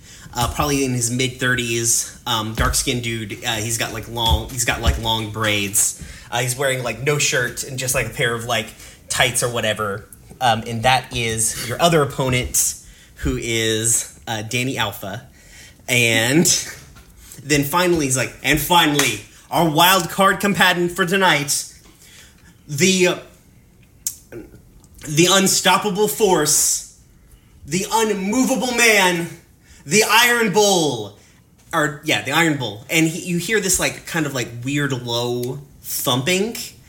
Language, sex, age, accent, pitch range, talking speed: English, male, 30-49, American, 115-160 Hz, 145 wpm